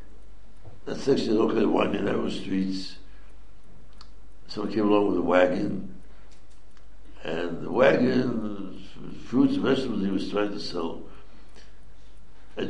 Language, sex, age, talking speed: English, male, 60-79, 130 wpm